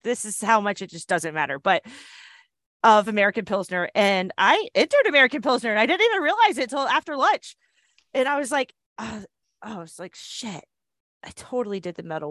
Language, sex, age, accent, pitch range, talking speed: English, female, 30-49, American, 180-245 Hz, 200 wpm